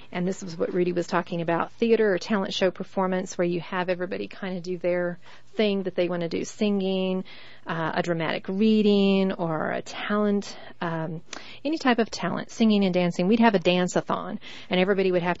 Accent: American